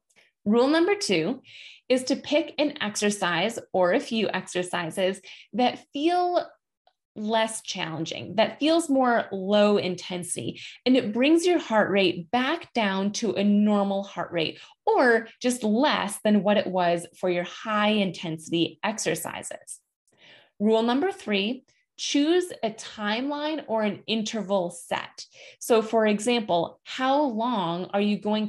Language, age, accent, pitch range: English, 20-39, American, 185-255 Hz